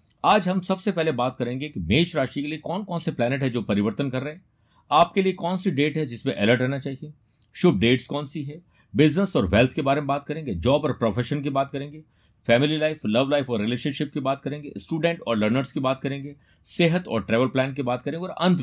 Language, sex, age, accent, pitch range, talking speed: Hindi, male, 50-69, native, 115-155 Hz, 210 wpm